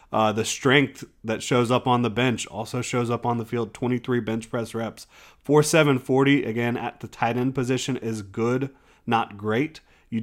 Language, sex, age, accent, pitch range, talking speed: English, male, 30-49, American, 110-125 Hz, 195 wpm